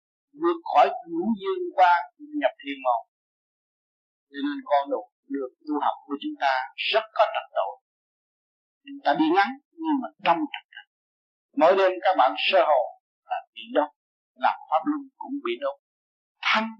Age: 60-79